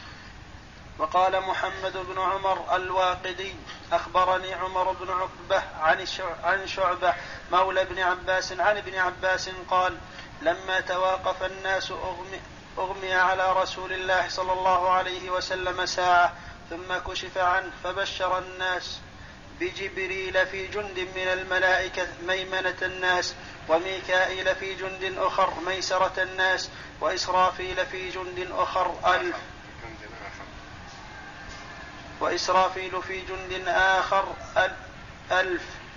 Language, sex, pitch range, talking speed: Arabic, male, 180-190 Hz, 100 wpm